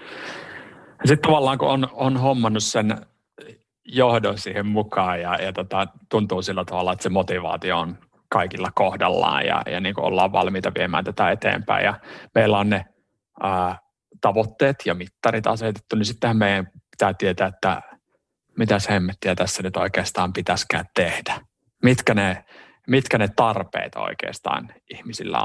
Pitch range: 95-110 Hz